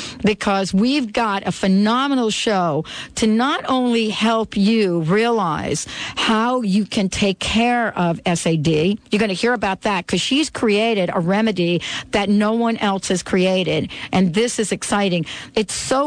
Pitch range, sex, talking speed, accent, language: 190-230 Hz, female, 155 wpm, American, English